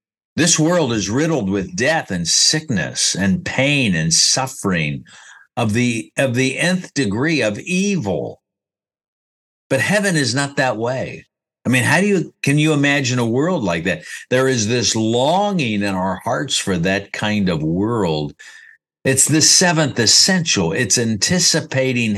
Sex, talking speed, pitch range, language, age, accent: male, 150 wpm, 115-160 Hz, English, 60-79, American